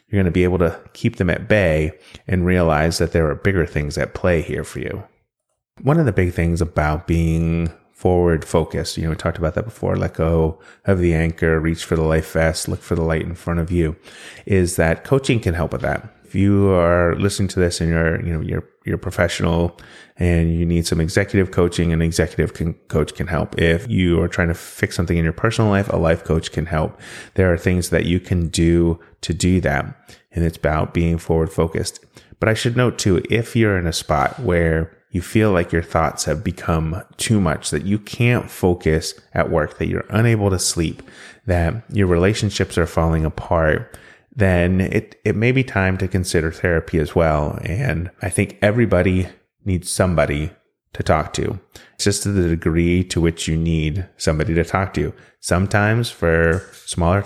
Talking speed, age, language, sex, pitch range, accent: 200 wpm, 30-49, English, male, 80-100 Hz, American